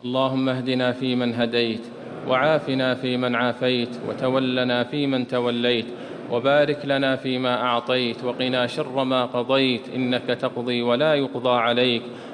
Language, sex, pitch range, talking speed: English, male, 125-140 Hz, 125 wpm